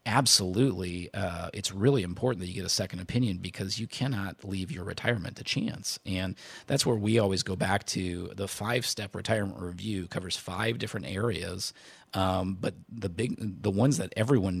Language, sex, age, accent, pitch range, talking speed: English, male, 40-59, American, 90-110 Hz, 175 wpm